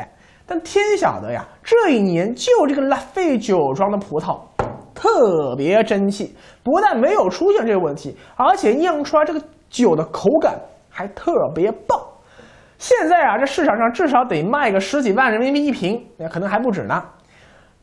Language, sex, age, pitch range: Chinese, male, 20-39, 190-315 Hz